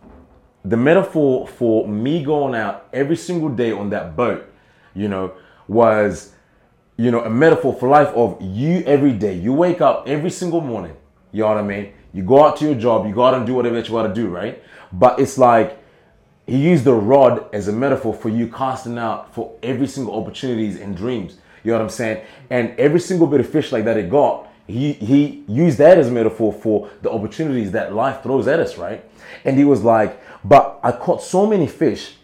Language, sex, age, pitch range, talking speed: English, male, 20-39, 110-150 Hz, 215 wpm